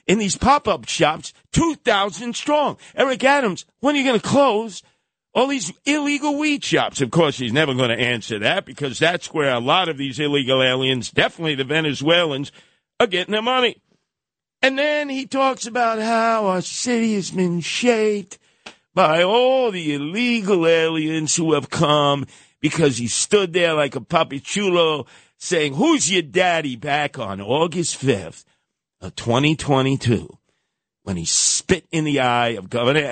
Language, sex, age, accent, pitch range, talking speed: English, male, 50-69, American, 130-180 Hz, 160 wpm